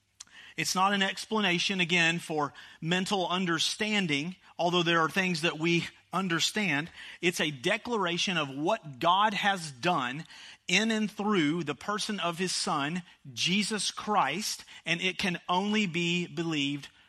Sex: male